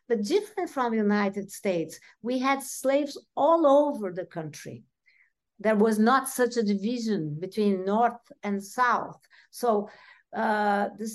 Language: English